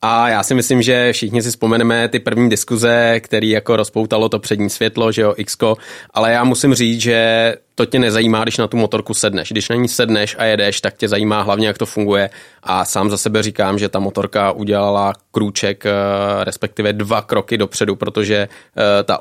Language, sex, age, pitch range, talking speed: Czech, male, 20-39, 105-115 Hz, 195 wpm